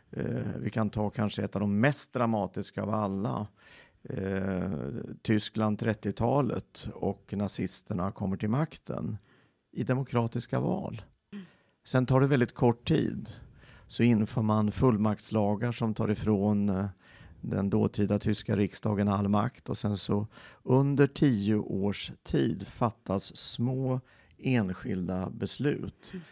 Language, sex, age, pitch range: Swedish, male, 50-69, 100-115 Hz